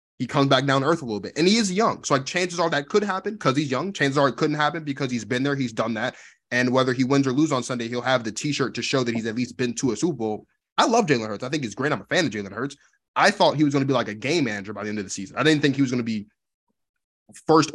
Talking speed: 330 wpm